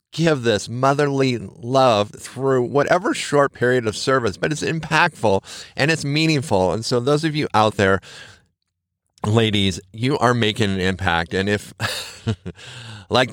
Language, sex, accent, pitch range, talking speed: English, male, American, 105-145 Hz, 145 wpm